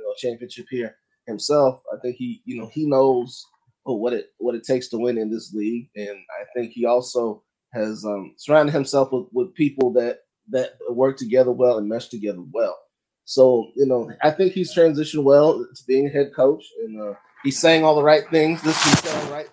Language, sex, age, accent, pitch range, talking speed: English, male, 20-39, American, 115-150 Hz, 205 wpm